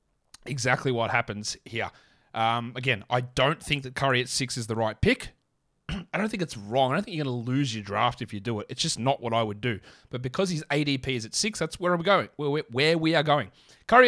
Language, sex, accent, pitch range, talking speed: English, male, Australian, 120-160 Hz, 245 wpm